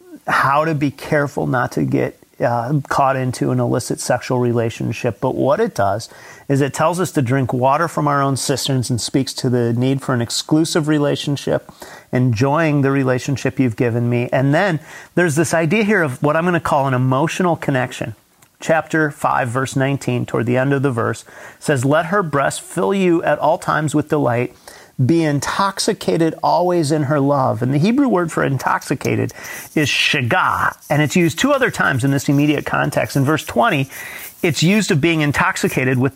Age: 40-59